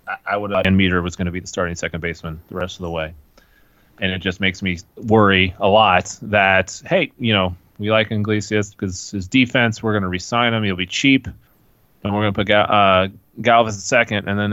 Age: 30-49